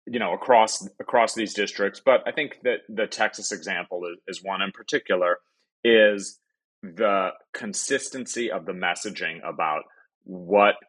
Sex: male